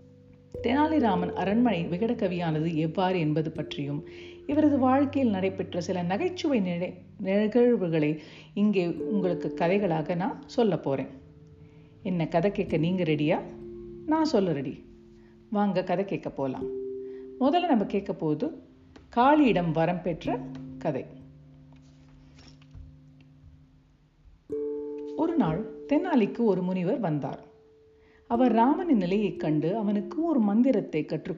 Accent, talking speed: Indian, 90 wpm